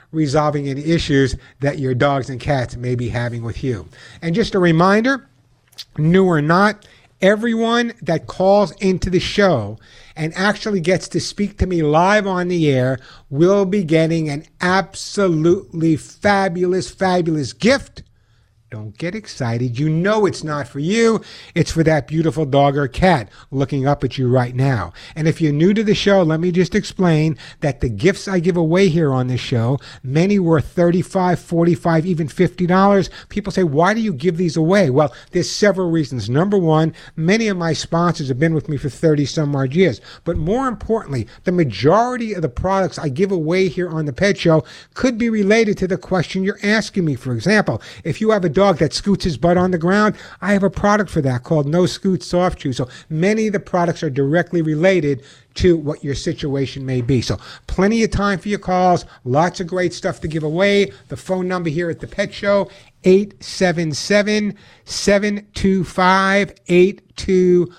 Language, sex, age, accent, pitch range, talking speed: English, male, 60-79, American, 145-190 Hz, 180 wpm